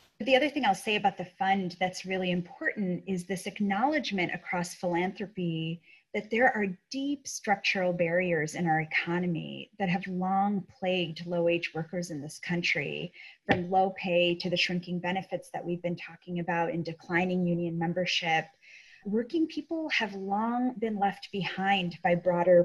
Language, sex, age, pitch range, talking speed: English, female, 30-49, 175-205 Hz, 160 wpm